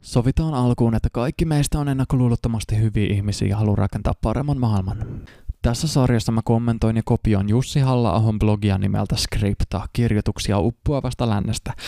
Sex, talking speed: male, 140 wpm